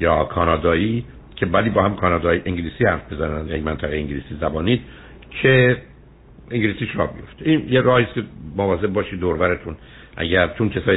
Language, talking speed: Persian, 140 wpm